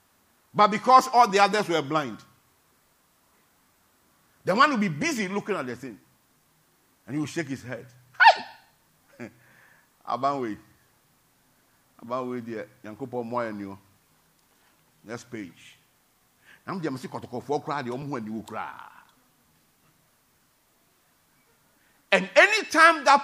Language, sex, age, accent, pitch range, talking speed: English, male, 50-69, Nigerian, 140-225 Hz, 85 wpm